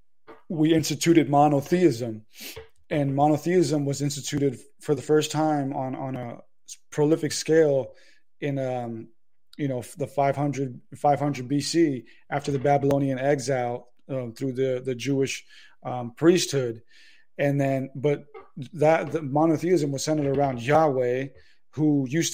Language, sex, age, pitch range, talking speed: English, male, 30-49, 130-150 Hz, 130 wpm